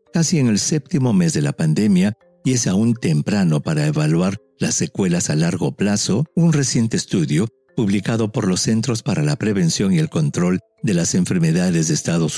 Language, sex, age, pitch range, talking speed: English, male, 50-69, 120-175 Hz, 180 wpm